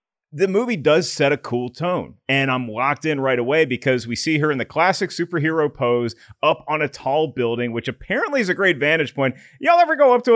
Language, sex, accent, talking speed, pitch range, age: English, male, American, 225 wpm, 125-165 Hz, 30-49